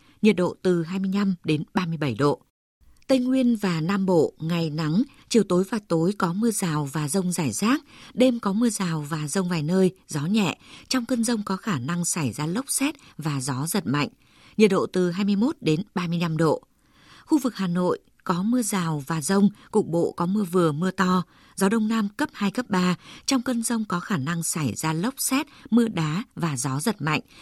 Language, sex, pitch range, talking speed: Vietnamese, female, 170-220 Hz, 210 wpm